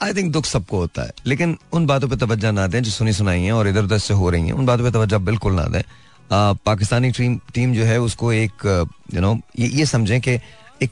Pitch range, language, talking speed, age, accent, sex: 105-130 Hz, Hindi, 240 wpm, 30-49, native, male